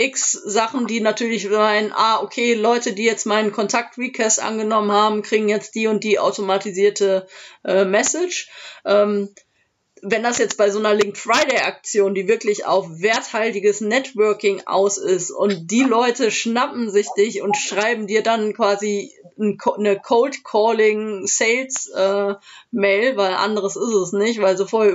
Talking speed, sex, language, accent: 140 wpm, female, German, German